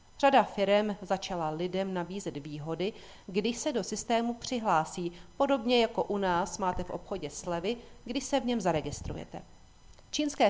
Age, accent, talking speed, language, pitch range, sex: 40-59, native, 145 wpm, Czech, 170-225 Hz, female